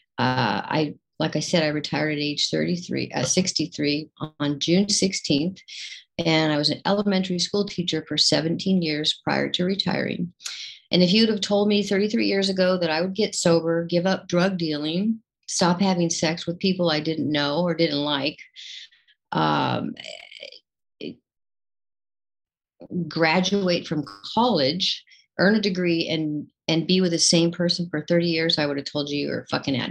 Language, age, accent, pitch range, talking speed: English, 50-69, American, 150-185 Hz, 165 wpm